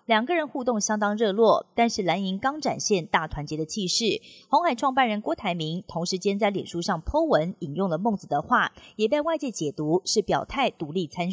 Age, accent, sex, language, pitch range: 30-49, native, female, Chinese, 180-240 Hz